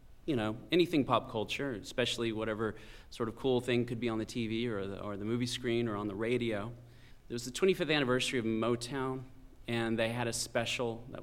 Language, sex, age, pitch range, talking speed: English, male, 30-49, 110-130 Hz, 210 wpm